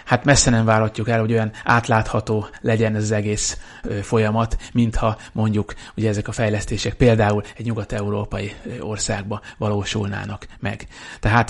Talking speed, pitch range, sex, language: 130 wpm, 110-135 Hz, male, Hungarian